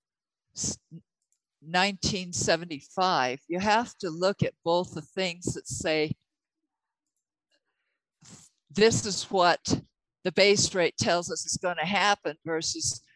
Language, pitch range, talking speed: English, 155-195 Hz, 110 wpm